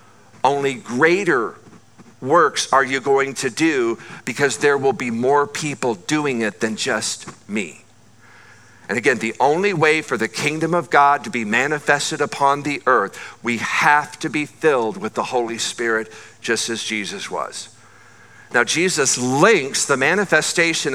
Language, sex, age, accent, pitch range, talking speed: English, male, 50-69, American, 130-155 Hz, 150 wpm